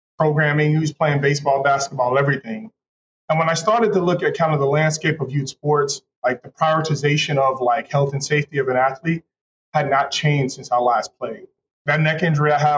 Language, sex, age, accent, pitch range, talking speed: English, male, 20-39, American, 135-160 Hz, 205 wpm